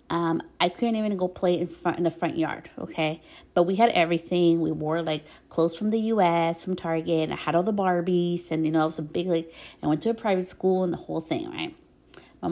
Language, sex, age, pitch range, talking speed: English, female, 30-49, 165-195 Hz, 255 wpm